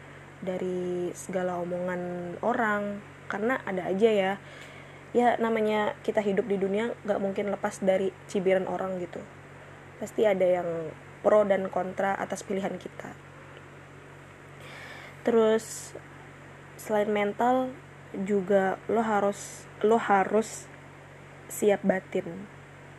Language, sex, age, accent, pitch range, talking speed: Indonesian, female, 20-39, native, 190-215 Hz, 105 wpm